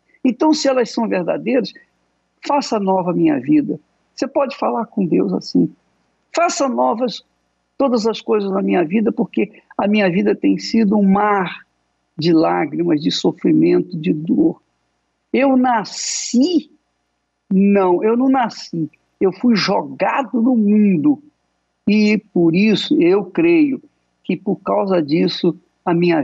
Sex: male